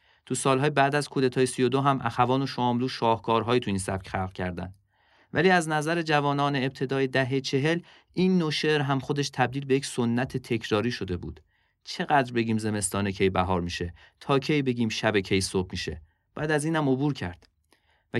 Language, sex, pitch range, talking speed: Persian, male, 105-140 Hz, 180 wpm